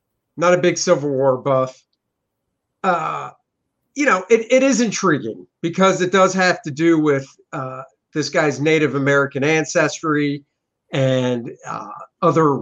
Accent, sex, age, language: American, male, 50-69, English